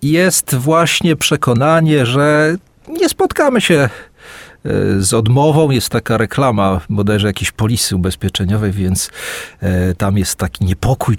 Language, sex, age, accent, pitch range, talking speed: Polish, male, 40-59, native, 105-160 Hz, 115 wpm